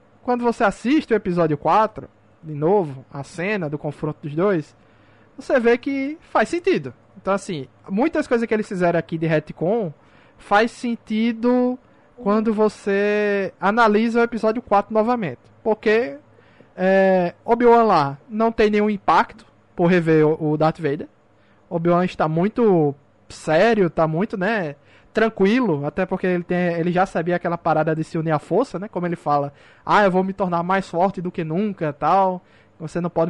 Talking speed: 160 wpm